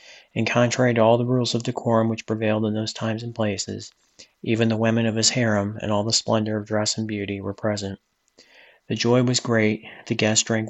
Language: English